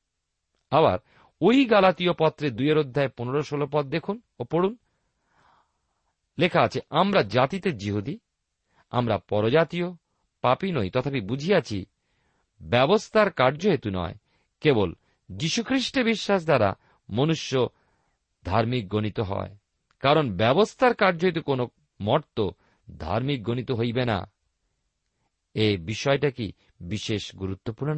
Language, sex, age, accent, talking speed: Bengali, male, 50-69, native, 100 wpm